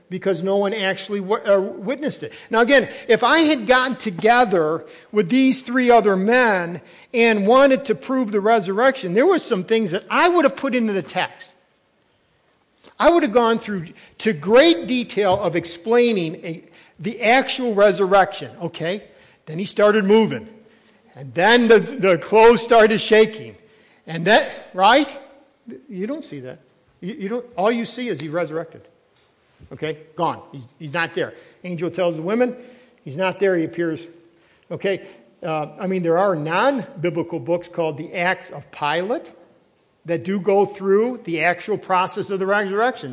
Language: English